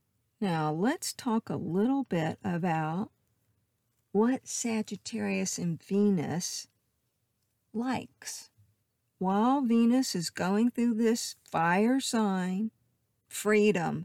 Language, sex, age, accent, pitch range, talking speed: English, female, 50-69, American, 165-230 Hz, 90 wpm